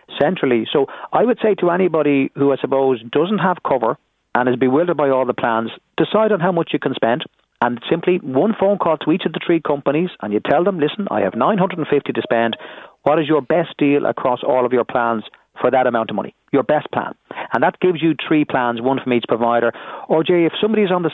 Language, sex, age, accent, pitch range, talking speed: English, male, 40-59, Irish, 125-165 Hz, 235 wpm